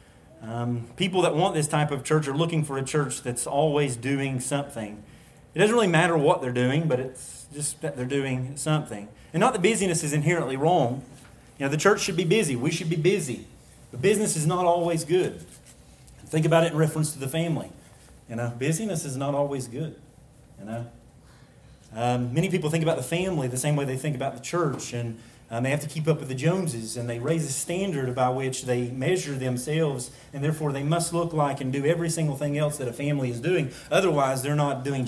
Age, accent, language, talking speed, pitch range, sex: 30-49, American, English, 220 wpm, 130-165 Hz, male